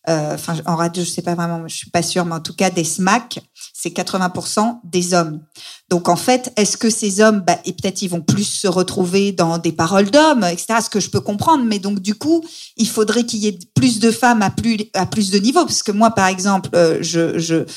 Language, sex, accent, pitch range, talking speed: French, female, French, 175-235 Hz, 245 wpm